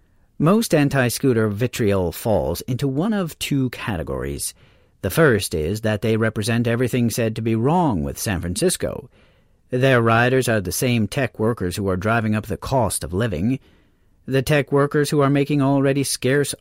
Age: 40-59